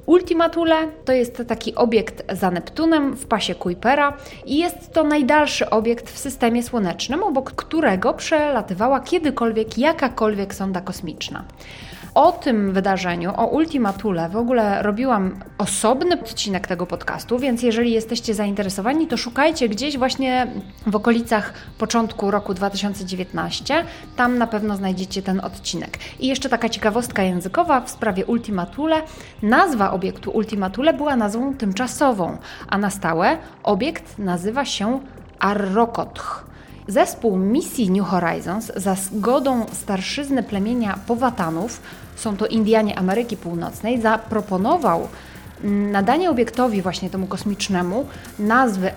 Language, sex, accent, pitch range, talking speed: Polish, female, native, 195-255 Hz, 120 wpm